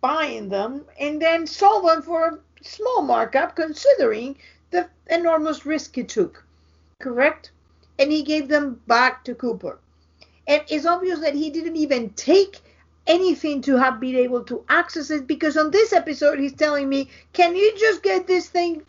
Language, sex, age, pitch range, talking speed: English, female, 50-69, 205-310 Hz, 170 wpm